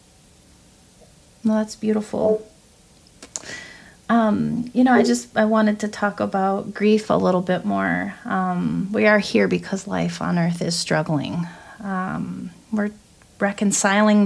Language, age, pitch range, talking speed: English, 30-49, 175-210 Hz, 125 wpm